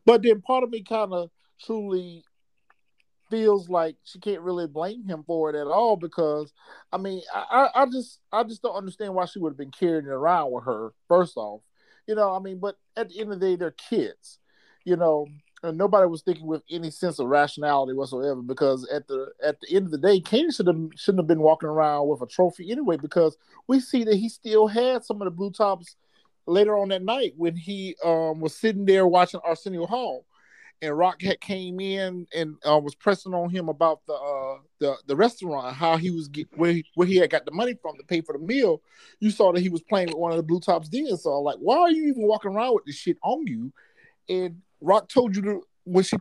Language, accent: English, American